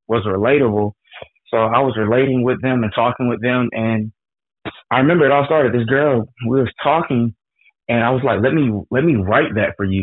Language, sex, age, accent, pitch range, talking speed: English, male, 20-39, American, 110-130 Hz, 210 wpm